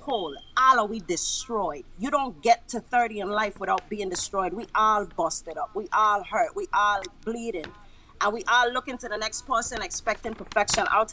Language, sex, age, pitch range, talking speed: English, female, 30-49, 210-280 Hz, 195 wpm